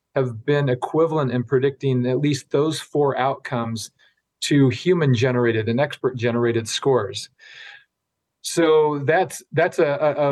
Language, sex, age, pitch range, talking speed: English, male, 40-59, 125-145 Hz, 130 wpm